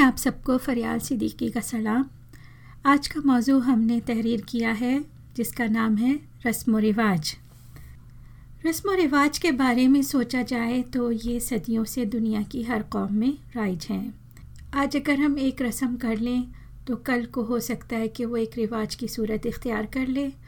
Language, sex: Hindi, female